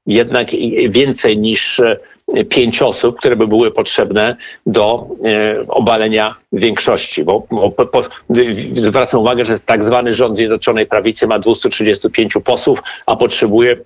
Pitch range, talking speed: 110-130 Hz, 115 wpm